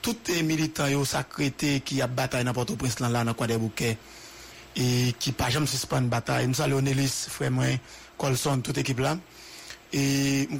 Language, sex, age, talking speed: English, male, 60-79, 160 wpm